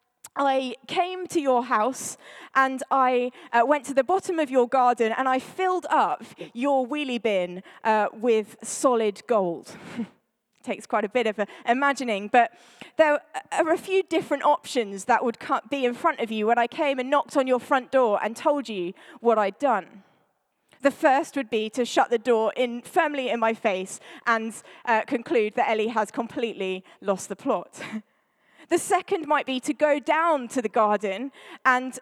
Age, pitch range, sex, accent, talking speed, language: 20-39, 225-295 Hz, female, British, 180 wpm, English